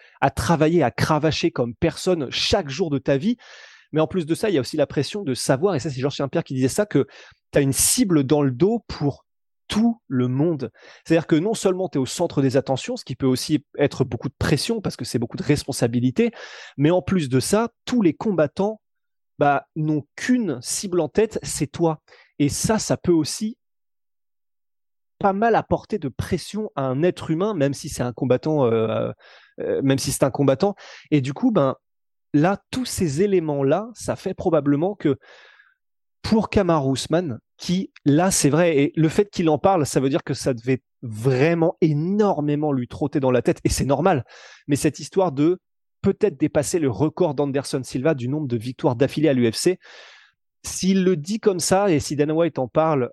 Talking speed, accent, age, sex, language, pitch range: 200 wpm, French, 20-39, male, French, 135-185 Hz